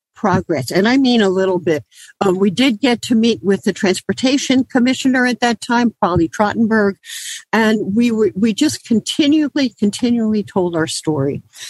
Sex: female